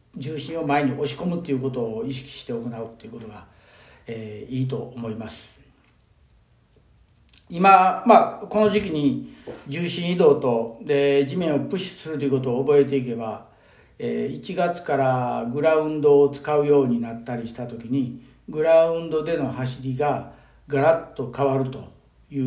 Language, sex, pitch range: Japanese, male, 130-170 Hz